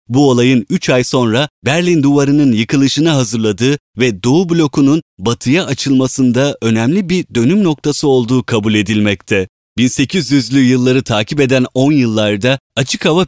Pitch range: 115-150 Hz